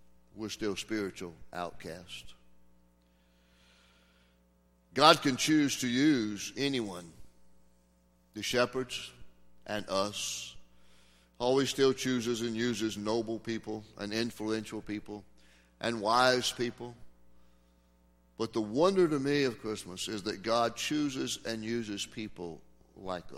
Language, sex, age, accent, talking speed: English, male, 60-79, American, 110 wpm